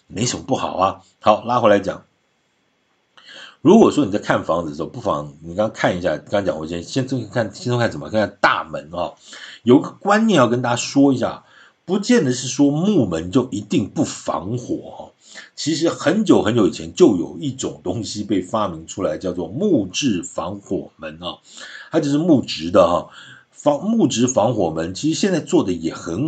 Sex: male